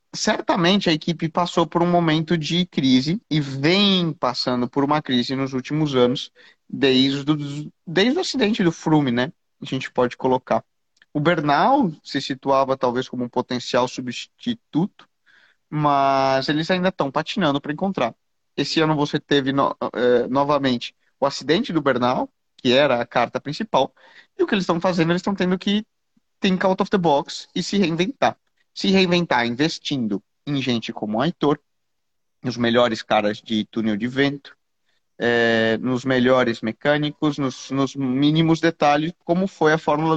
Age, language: 20-39, Portuguese